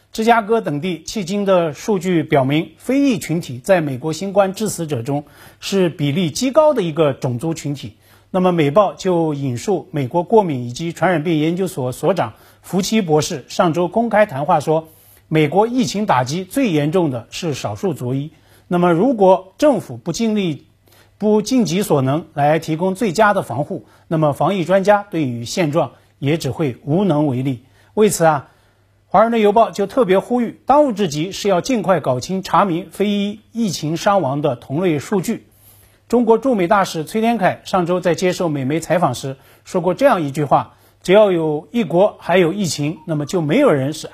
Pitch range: 145-200 Hz